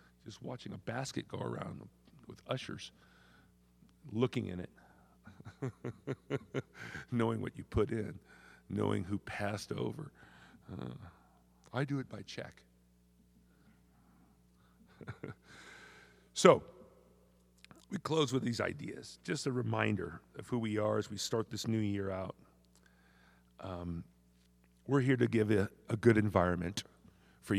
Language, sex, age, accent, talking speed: English, male, 50-69, American, 120 wpm